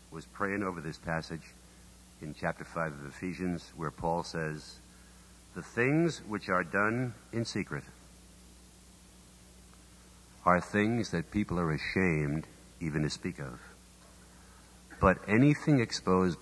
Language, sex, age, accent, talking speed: English, male, 60-79, American, 120 wpm